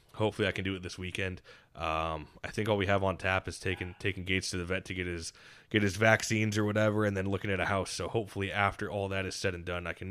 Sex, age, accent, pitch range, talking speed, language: male, 20-39, American, 90-110 Hz, 280 wpm, English